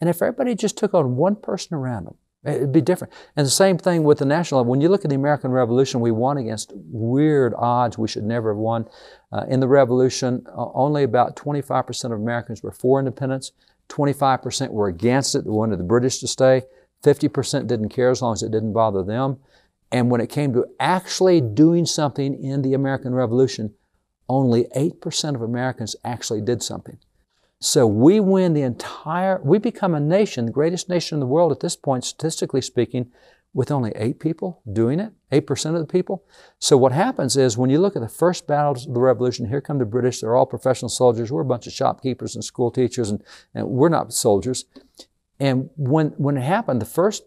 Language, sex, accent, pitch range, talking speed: English, male, American, 120-155 Hz, 205 wpm